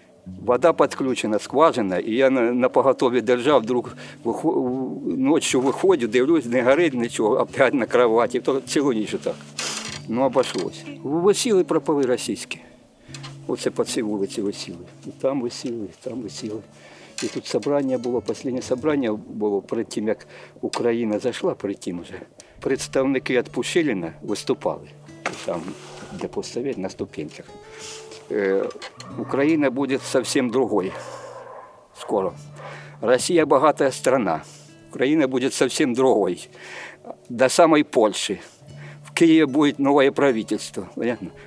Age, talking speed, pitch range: 50-69, 120 wpm, 115-160 Hz